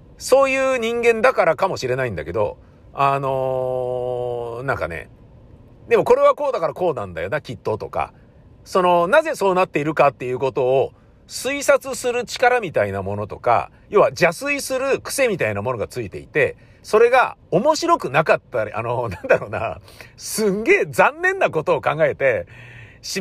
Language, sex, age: Japanese, male, 50-69